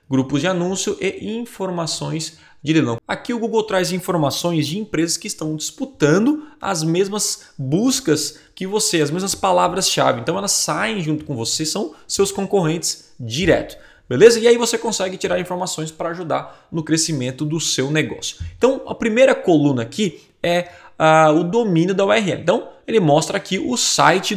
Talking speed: 165 wpm